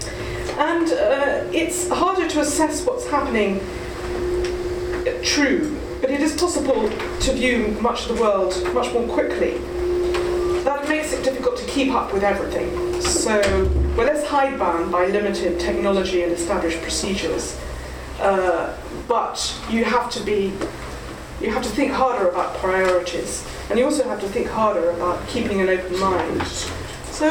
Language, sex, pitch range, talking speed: English, female, 180-265 Hz, 150 wpm